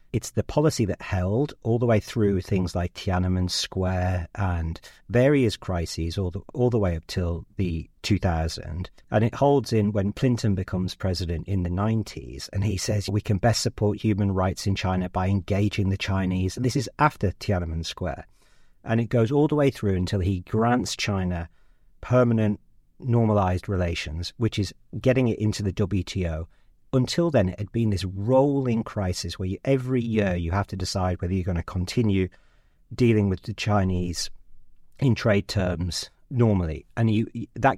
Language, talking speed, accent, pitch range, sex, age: English, 170 wpm, British, 90-115 Hz, male, 40-59